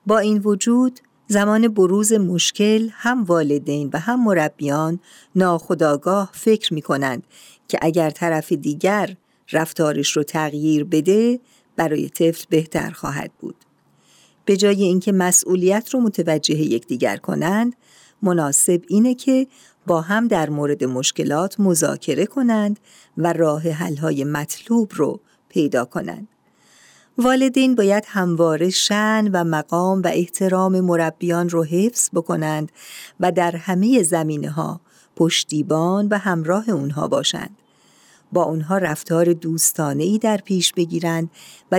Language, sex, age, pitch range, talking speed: Persian, female, 50-69, 160-210 Hz, 120 wpm